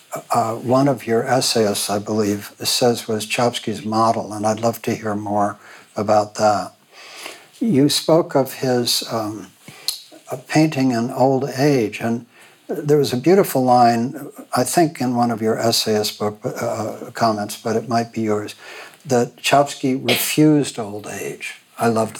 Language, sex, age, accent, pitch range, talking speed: English, male, 60-79, American, 110-140 Hz, 150 wpm